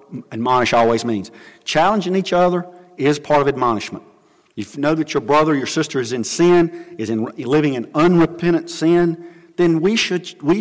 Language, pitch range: English, 130-180 Hz